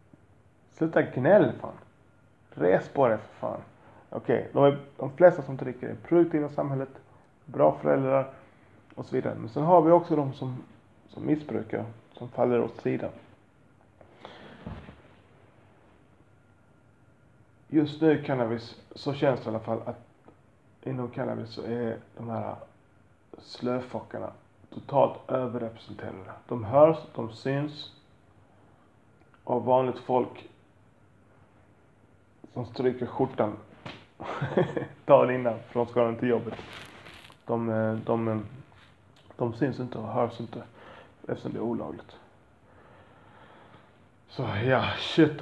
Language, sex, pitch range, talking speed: Swedish, male, 110-130 Hz, 120 wpm